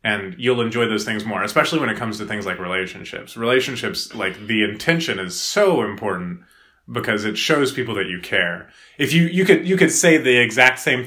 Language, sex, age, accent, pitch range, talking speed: English, male, 20-39, American, 100-120 Hz, 205 wpm